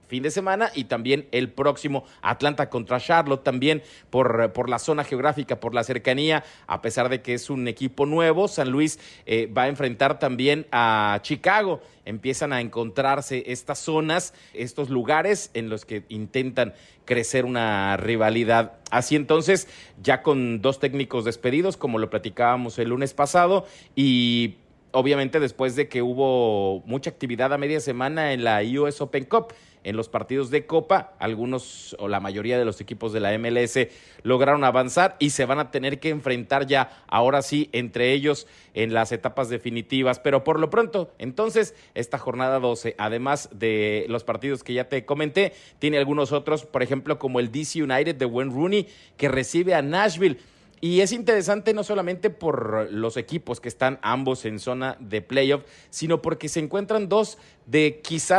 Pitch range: 120-155 Hz